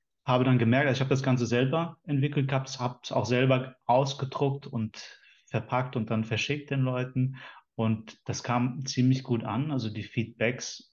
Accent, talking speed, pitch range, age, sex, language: German, 165 wpm, 115-130 Hz, 30-49, male, German